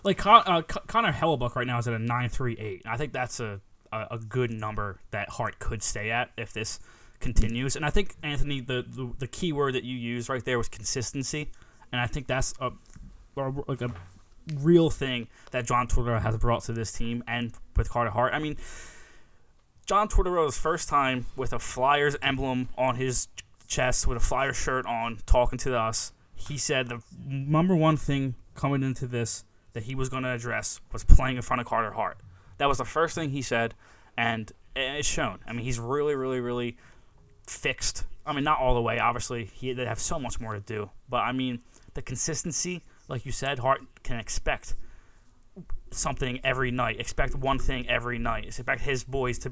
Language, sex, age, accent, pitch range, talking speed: English, male, 20-39, American, 115-135 Hz, 200 wpm